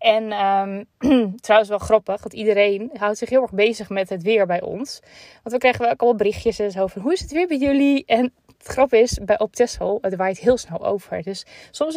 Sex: female